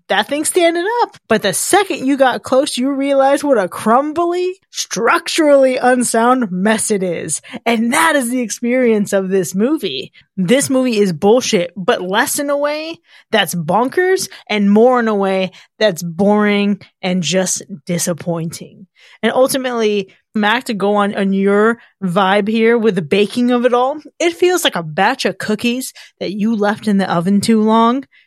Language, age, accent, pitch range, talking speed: English, 20-39, American, 195-255 Hz, 170 wpm